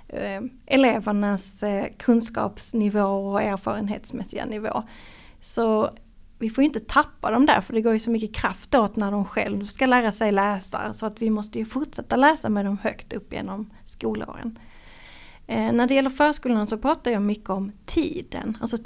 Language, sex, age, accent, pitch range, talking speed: Swedish, female, 30-49, Norwegian, 200-245 Hz, 165 wpm